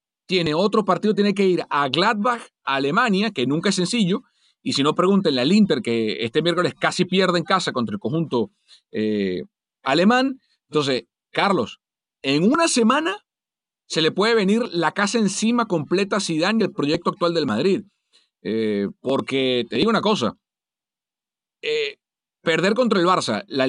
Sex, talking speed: male, 160 wpm